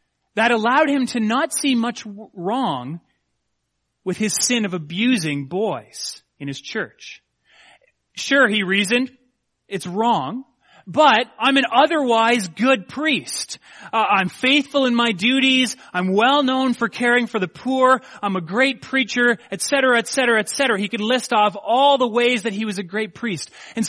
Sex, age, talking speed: male, 30-49, 160 wpm